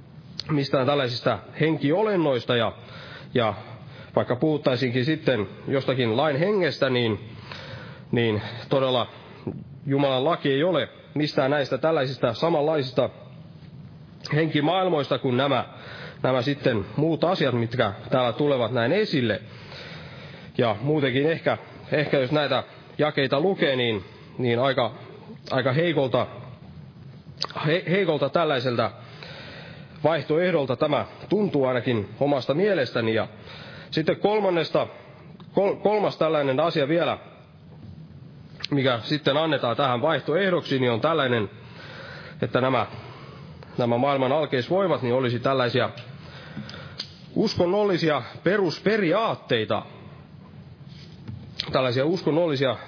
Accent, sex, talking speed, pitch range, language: native, male, 95 wpm, 125-155 Hz, Finnish